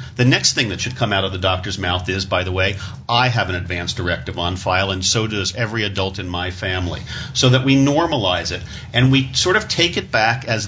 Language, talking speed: English, 240 wpm